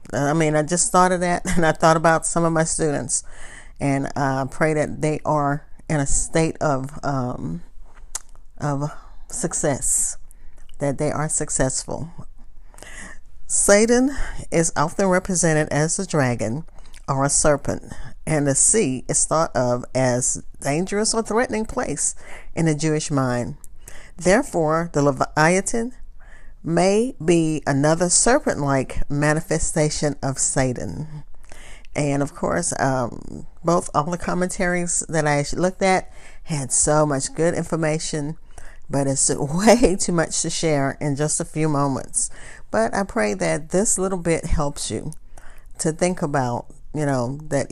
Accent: American